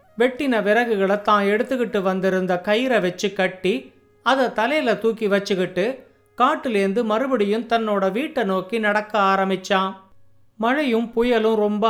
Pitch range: 195-240 Hz